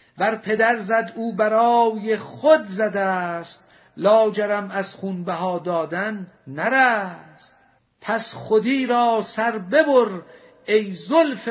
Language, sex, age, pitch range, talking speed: Persian, male, 50-69, 190-235 Hz, 110 wpm